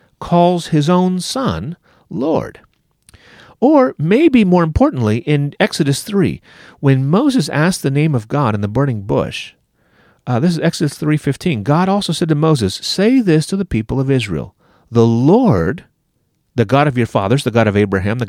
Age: 40-59